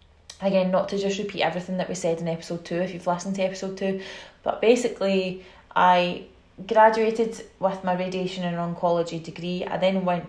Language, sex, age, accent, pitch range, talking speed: English, female, 20-39, British, 170-200 Hz, 180 wpm